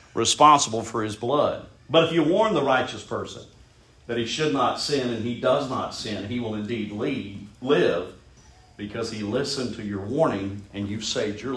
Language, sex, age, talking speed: English, male, 50-69, 185 wpm